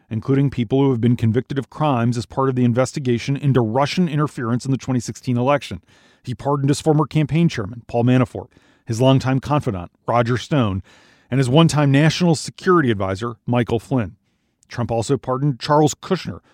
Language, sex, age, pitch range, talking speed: English, male, 40-59, 120-155 Hz, 165 wpm